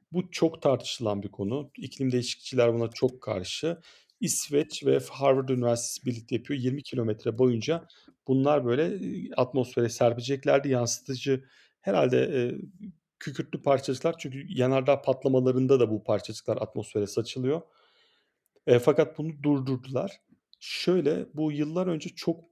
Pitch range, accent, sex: 120-145 Hz, native, male